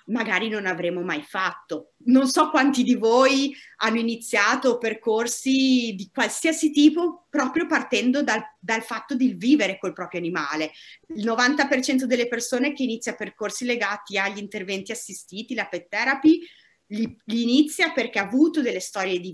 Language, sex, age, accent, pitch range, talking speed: Italian, female, 30-49, native, 200-275 Hz, 150 wpm